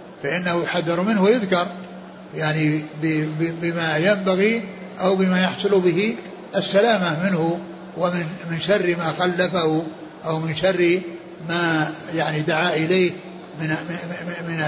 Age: 60-79